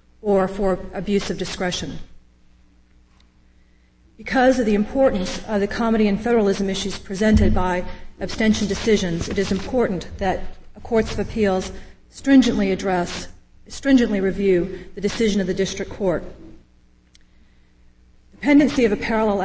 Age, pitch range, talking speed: 40-59, 180-210 Hz, 125 wpm